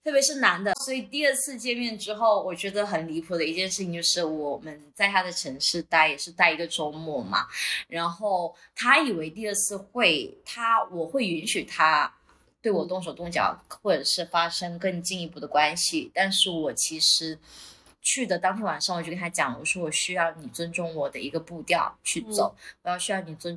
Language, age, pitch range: Chinese, 20-39, 165-210 Hz